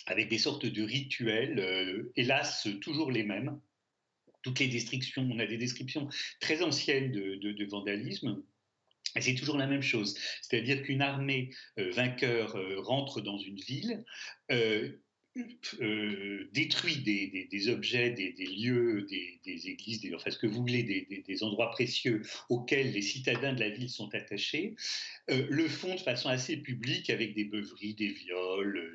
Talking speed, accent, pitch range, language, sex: 170 wpm, French, 100-135 Hz, French, male